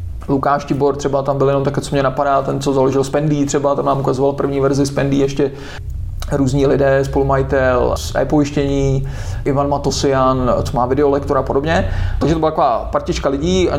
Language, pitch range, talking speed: Czech, 140-155 Hz, 180 wpm